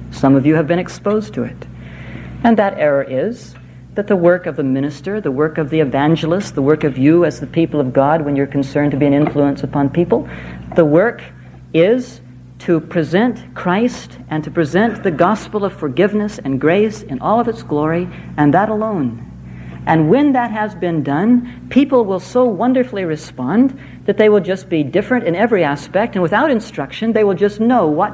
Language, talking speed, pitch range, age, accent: English, 195 wpm, 140-210 Hz, 60-79, American